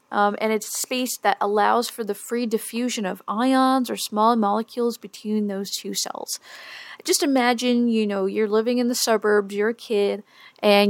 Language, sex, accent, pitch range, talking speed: English, female, American, 210-250 Hz, 175 wpm